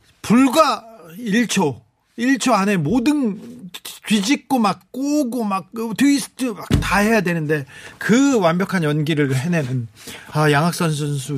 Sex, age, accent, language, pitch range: male, 40-59, native, Korean, 140-190 Hz